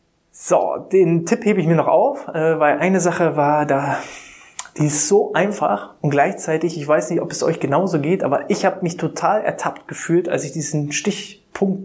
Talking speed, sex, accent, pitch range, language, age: 190 wpm, male, German, 150-190 Hz, German, 20-39